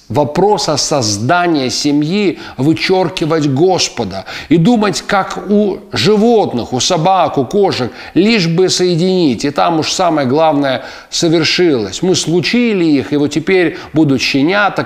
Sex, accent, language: male, native, Russian